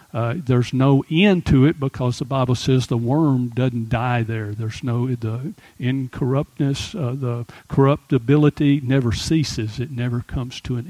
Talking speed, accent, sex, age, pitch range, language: 160 wpm, American, male, 50-69, 125-155 Hz, English